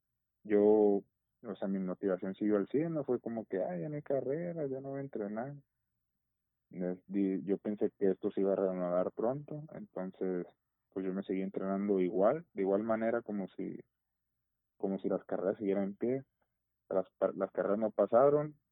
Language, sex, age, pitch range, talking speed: Spanish, male, 20-39, 95-125 Hz, 175 wpm